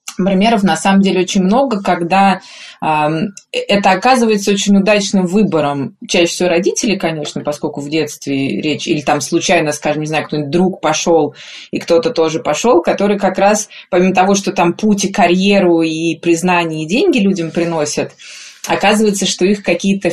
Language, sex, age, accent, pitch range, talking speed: Russian, female, 20-39, native, 155-195 Hz, 160 wpm